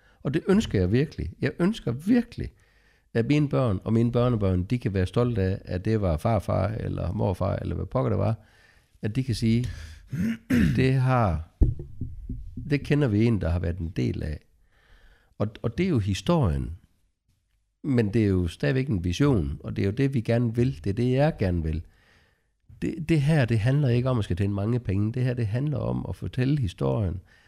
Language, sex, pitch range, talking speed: Danish, male, 90-125 Hz, 205 wpm